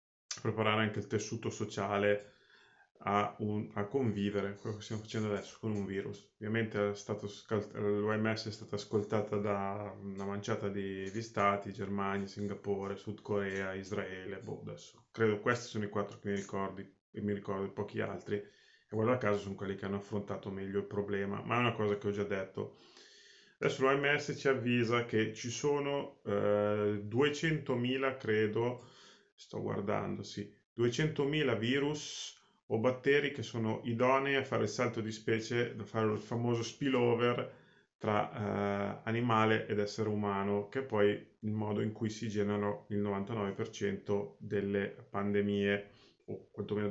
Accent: native